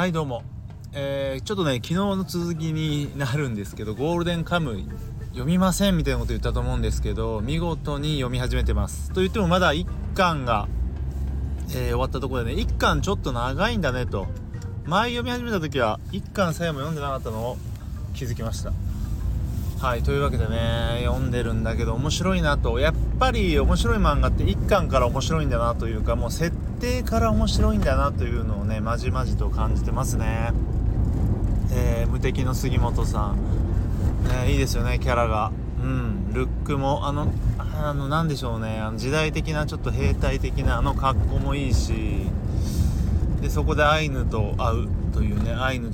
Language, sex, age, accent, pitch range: Japanese, male, 30-49, native, 100-135 Hz